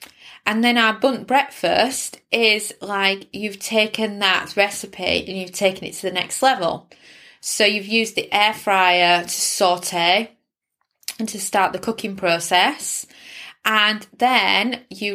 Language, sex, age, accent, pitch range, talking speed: English, female, 20-39, British, 185-220 Hz, 145 wpm